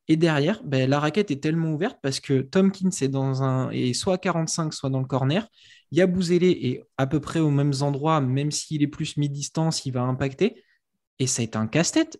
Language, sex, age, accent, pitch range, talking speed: French, male, 20-39, French, 135-175 Hz, 205 wpm